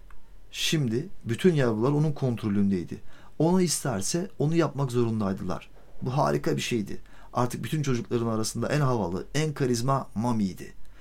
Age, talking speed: 50-69, 125 wpm